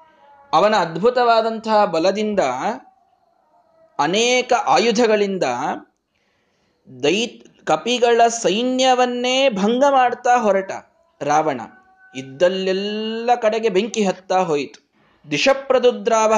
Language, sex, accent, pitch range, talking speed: Kannada, male, native, 195-255 Hz, 65 wpm